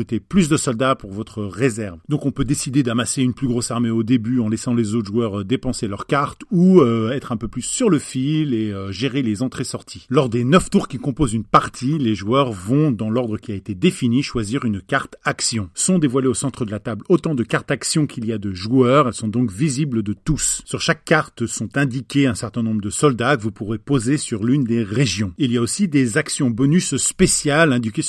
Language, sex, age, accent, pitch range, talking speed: French, male, 40-59, French, 115-145 Hz, 235 wpm